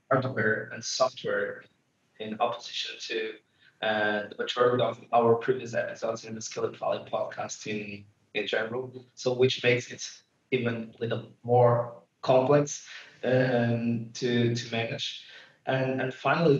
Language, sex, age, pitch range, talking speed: English, male, 20-39, 110-125 Hz, 130 wpm